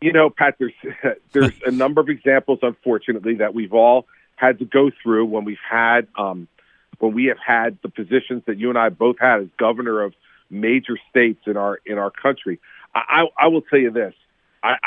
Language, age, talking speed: English, 50-69, 205 wpm